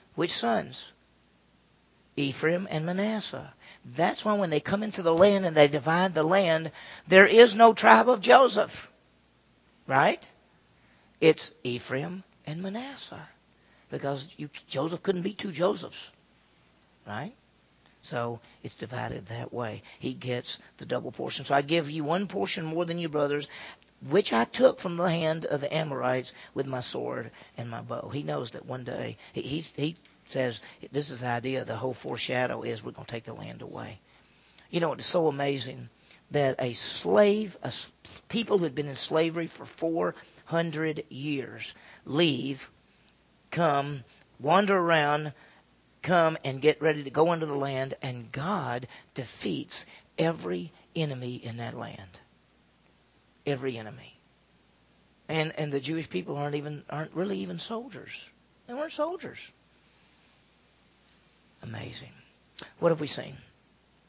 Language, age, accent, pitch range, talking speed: English, 50-69, American, 130-175 Hz, 145 wpm